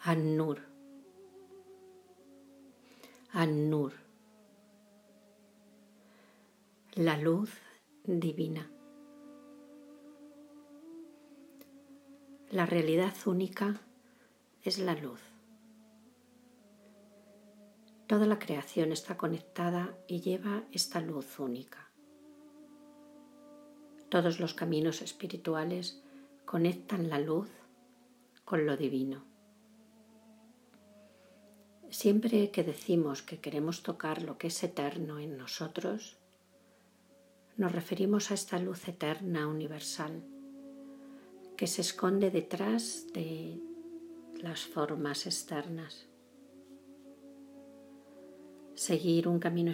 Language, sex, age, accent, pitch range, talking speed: Spanish, female, 50-69, Spanish, 165-265 Hz, 75 wpm